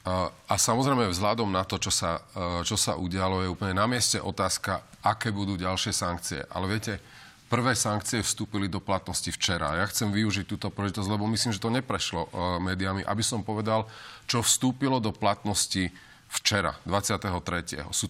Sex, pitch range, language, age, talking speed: male, 95-115 Hz, Slovak, 40-59, 160 wpm